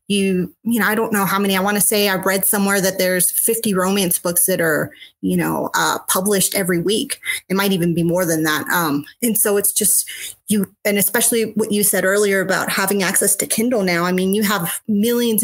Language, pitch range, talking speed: English, 190-230 Hz, 225 wpm